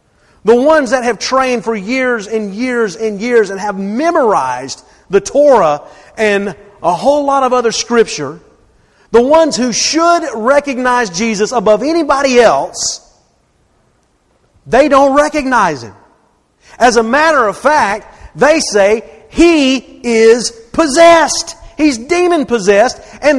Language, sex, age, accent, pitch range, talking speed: English, male, 40-59, American, 195-265 Hz, 125 wpm